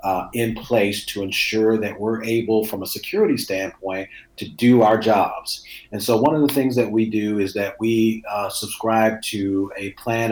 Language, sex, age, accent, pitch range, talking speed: English, male, 40-59, American, 105-120 Hz, 190 wpm